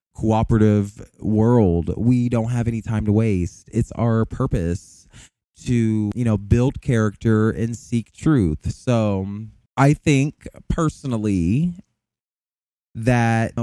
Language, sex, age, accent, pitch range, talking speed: English, male, 20-39, American, 105-130 Hz, 110 wpm